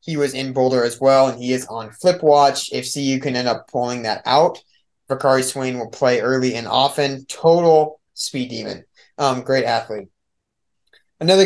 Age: 20-39